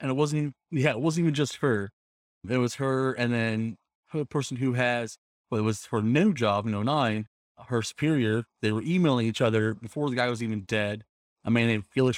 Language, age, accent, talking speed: English, 30-49, American, 210 wpm